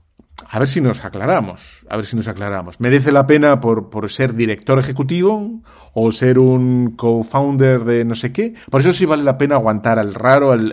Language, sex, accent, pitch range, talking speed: Spanish, male, Spanish, 100-130 Hz, 200 wpm